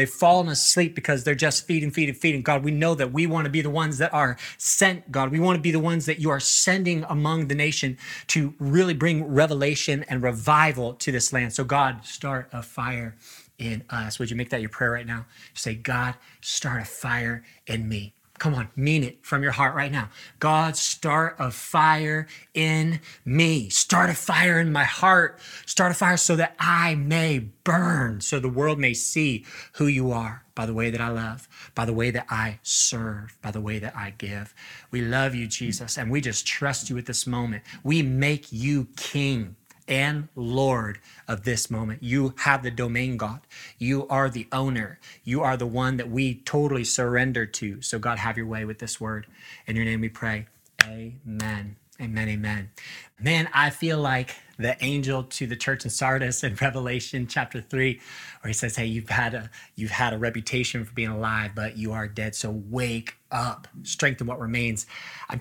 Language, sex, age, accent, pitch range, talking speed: English, male, 20-39, American, 115-145 Hz, 200 wpm